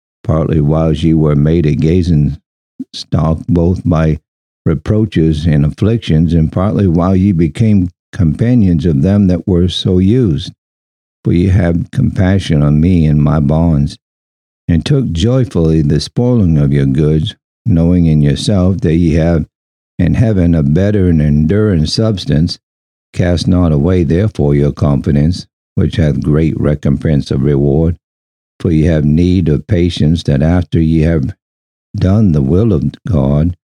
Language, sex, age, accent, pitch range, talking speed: English, male, 60-79, American, 70-90 Hz, 145 wpm